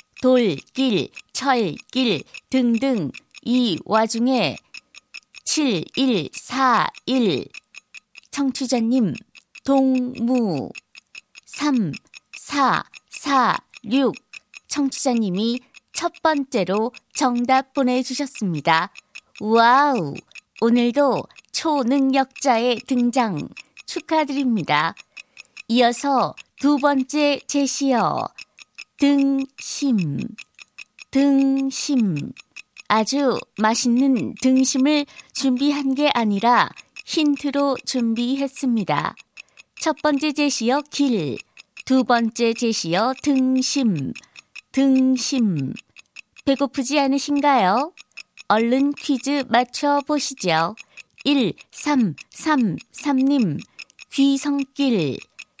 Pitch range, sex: 235-280 Hz, female